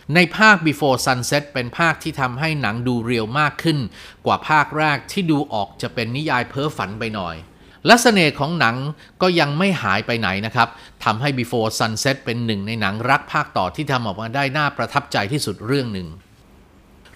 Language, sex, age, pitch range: Thai, male, 30-49, 110-145 Hz